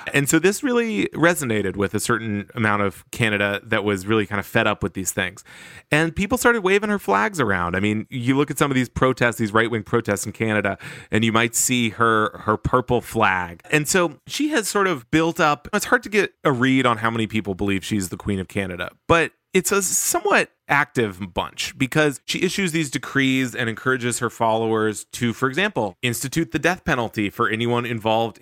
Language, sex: English, male